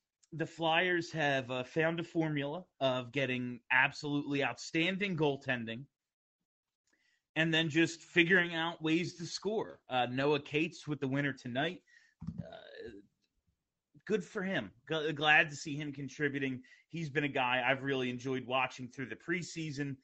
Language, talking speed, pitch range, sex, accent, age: English, 140 wpm, 130-170 Hz, male, American, 30-49